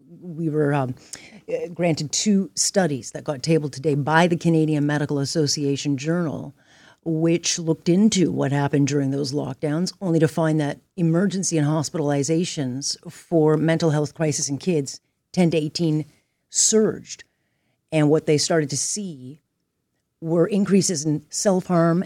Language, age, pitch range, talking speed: English, 40-59, 145-170 Hz, 140 wpm